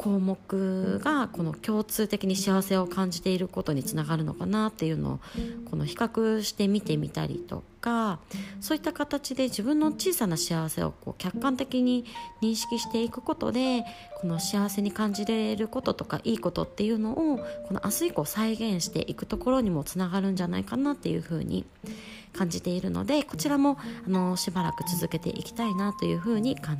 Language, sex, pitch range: Japanese, female, 160-230 Hz